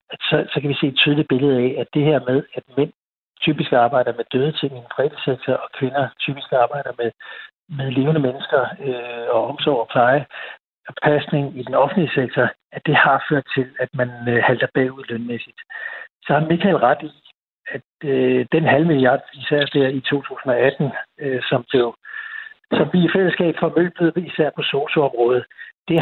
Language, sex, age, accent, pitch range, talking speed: Danish, male, 60-79, native, 130-160 Hz, 180 wpm